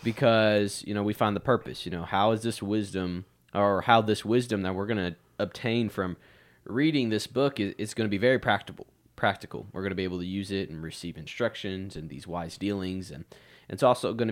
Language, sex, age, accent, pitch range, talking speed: English, male, 20-39, American, 90-110 Hz, 215 wpm